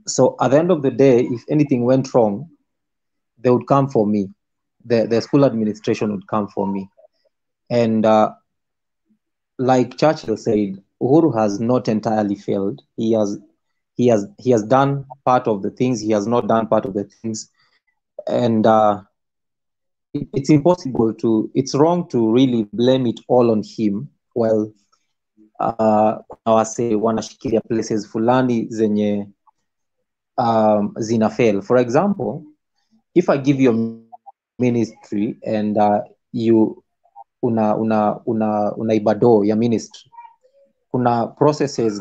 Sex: male